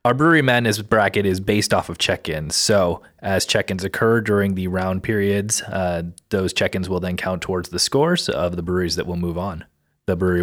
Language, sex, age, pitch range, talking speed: English, male, 30-49, 90-110 Hz, 200 wpm